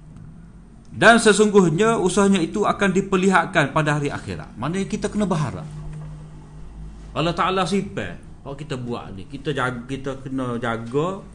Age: 40-59